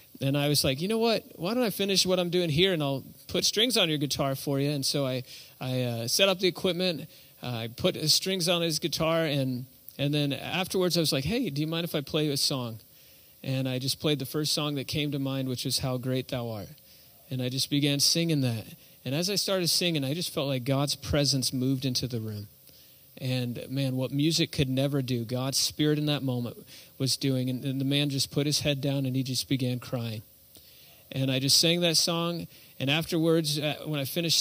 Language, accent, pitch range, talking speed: English, American, 130-160 Hz, 235 wpm